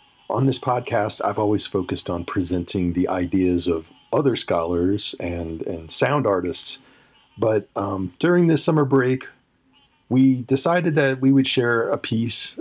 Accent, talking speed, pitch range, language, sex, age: American, 150 wpm, 95-130 Hz, English, male, 40-59